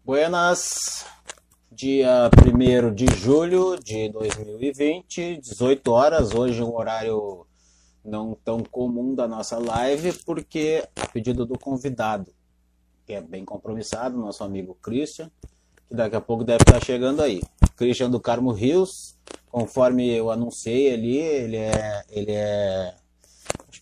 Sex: male